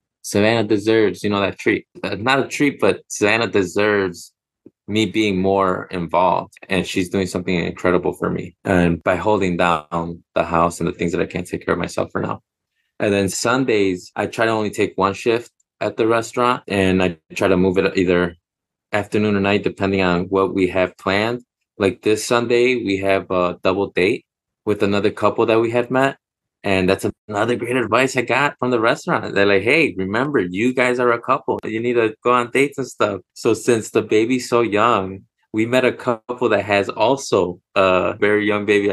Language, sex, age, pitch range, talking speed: English, male, 20-39, 95-115 Hz, 200 wpm